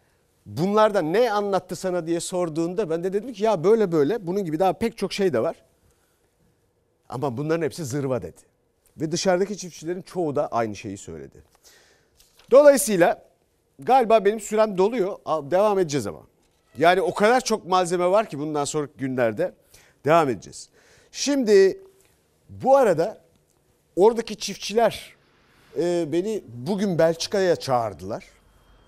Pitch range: 155-220 Hz